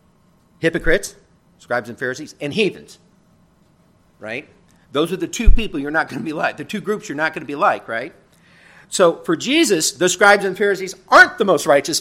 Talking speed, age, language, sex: 195 wpm, 50-69, English, male